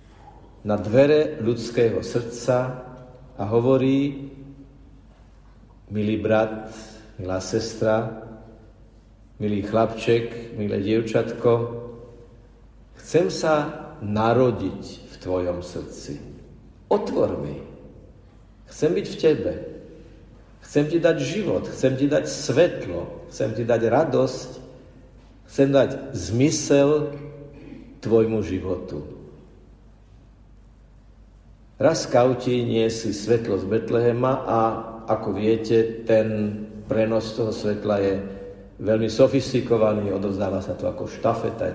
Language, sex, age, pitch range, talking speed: Slovak, male, 50-69, 105-120 Hz, 95 wpm